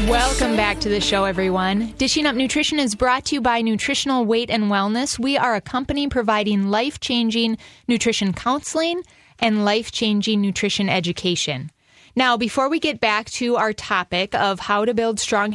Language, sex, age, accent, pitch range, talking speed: English, female, 20-39, American, 200-245 Hz, 165 wpm